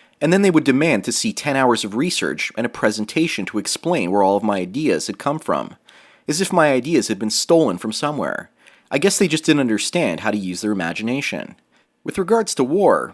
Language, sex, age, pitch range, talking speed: English, male, 30-49, 105-160 Hz, 220 wpm